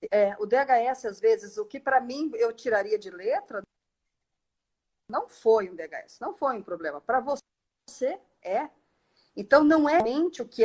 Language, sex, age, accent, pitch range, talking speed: Portuguese, female, 50-69, Brazilian, 205-320 Hz, 170 wpm